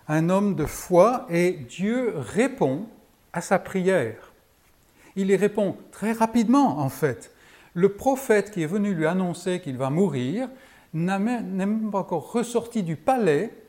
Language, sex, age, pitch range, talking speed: French, male, 60-79, 145-195 Hz, 150 wpm